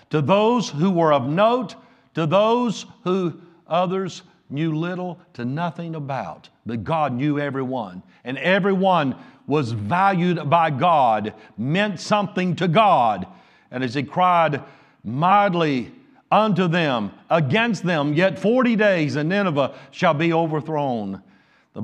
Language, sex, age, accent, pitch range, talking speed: English, male, 50-69, American, 135-180 Hz, 130 wpm